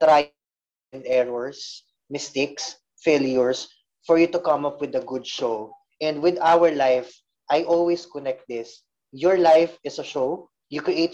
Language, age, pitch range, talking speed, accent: Filipino, 20-39, 125-165 Hz, 155 wpm, native